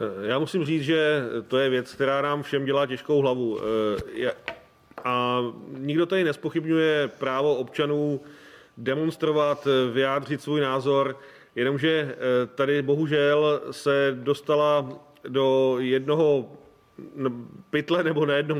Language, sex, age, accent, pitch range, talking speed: Czech, male, 40-59, native, 140-150 Hz, 110 wpm